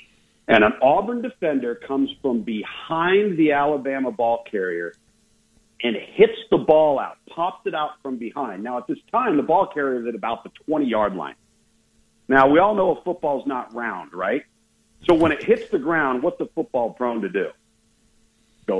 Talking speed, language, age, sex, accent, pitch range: 180 wpm, English, 50-69, male, American, 115-180 Hz